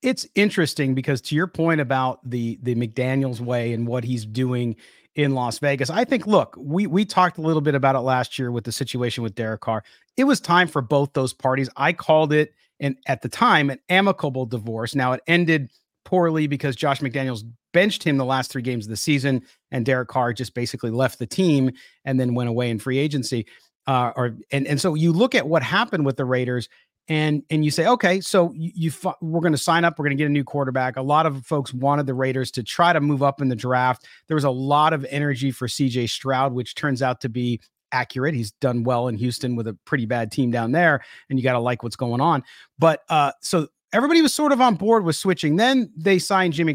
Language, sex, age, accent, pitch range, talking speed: English, male, 40-59, American, 125-170 Hz, 235 wpm